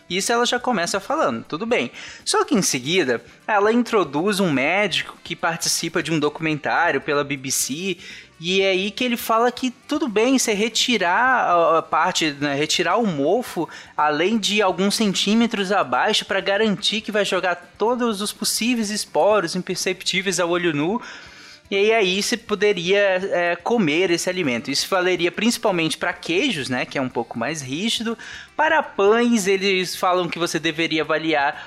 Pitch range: 150-210 Hz